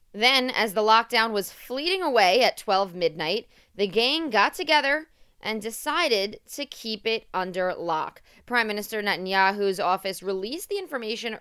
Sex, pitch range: female, 190-245 Hz